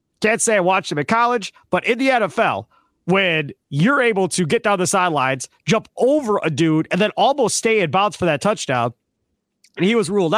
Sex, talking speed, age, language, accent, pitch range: male, 210 wpm, 40-59, English, American, 165-235 Hz